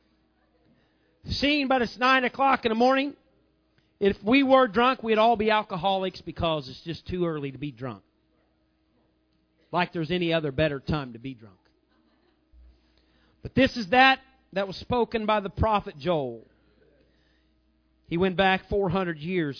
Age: 40-59